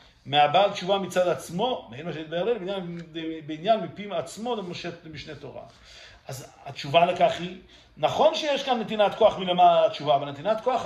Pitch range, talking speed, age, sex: 165-230 Hz, 150 wpm, 50-69, male